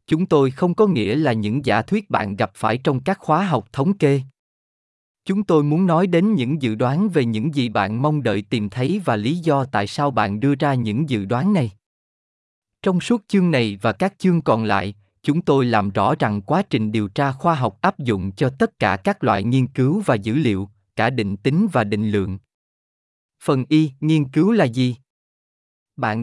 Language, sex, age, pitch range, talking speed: Vietnamese, male, 20-39, 110-160 Hz, 210 wpm